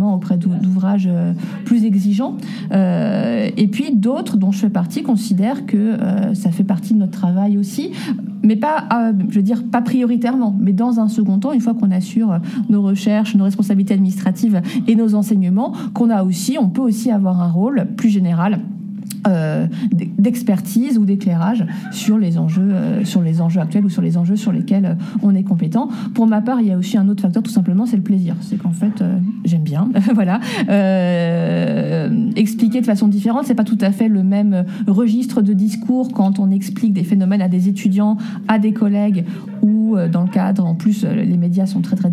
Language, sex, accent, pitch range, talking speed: French, female, French, 190-220 Hz, 195 wpm